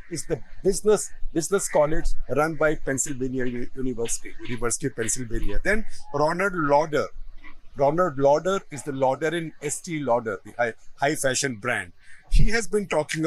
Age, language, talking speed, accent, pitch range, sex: 50-69, English, 150 wpm, Indian, 135-180 Hz, male